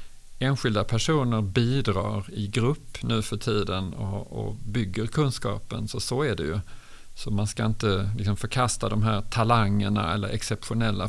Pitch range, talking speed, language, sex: 110-135 Hz, 150 wpm, Swedish, male